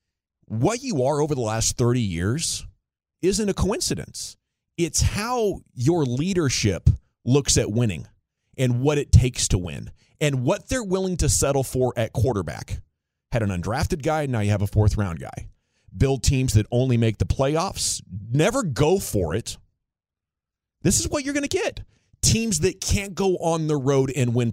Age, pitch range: 30-49, 110-145 Hz